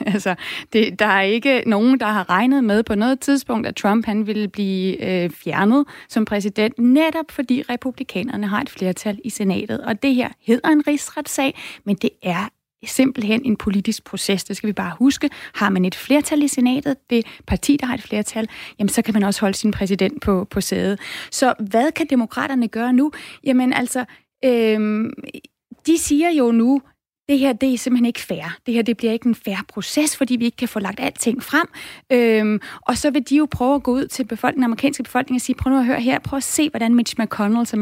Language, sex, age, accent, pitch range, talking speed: Danish, female, 30-49, native, 210-260 Hz, 215 wpm